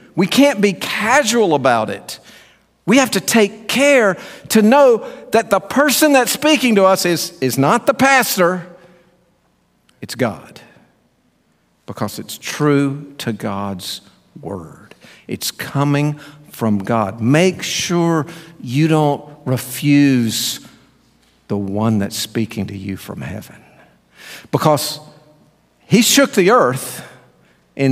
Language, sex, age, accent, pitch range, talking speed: English, male, 50-69, American, 110-165 Hz, 120 wpm